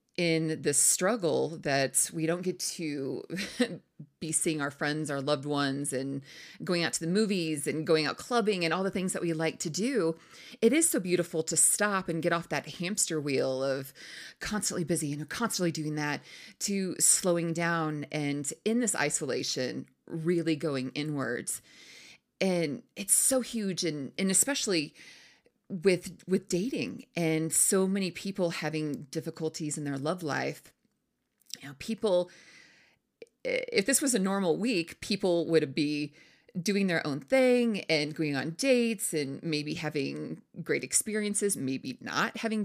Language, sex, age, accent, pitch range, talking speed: English, female, 30-49, American, 155-195 Hz, 155 wpm